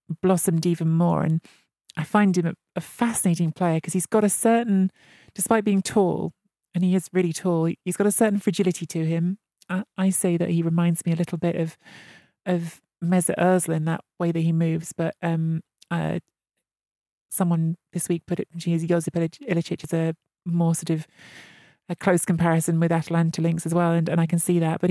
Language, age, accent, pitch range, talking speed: English, 30-49, British, 165-190 Hz, 200 wpm